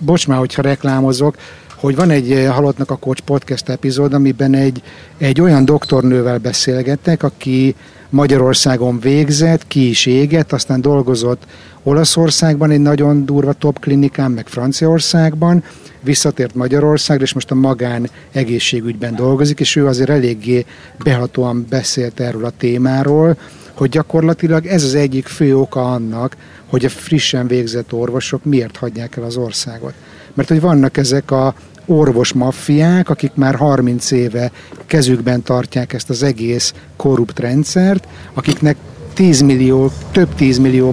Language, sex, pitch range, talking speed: Hungarian, male, 125-145 Hz, 135 wpm